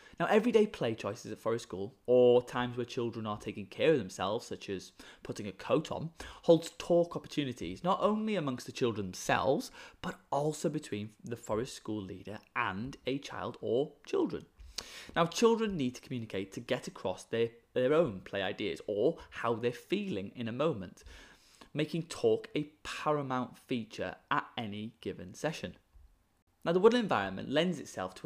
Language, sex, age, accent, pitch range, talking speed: English, male, 20-39, British, 110-160 Hz, 170 wpm